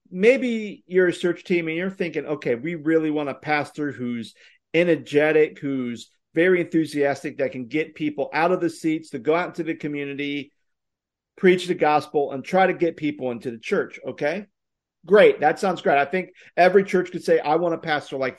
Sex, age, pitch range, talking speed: male, 50-69, 150-195 Hz, 195 wpm